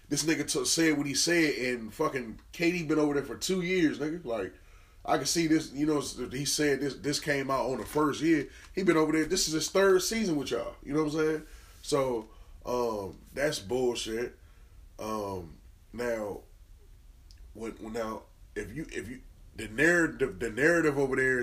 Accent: American